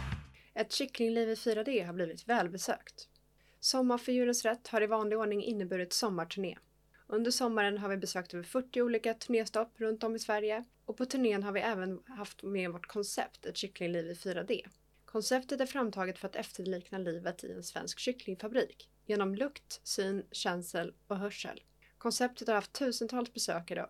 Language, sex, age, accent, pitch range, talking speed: Swedish, female, 30-49, native, 185-235 Hz, 165 wpm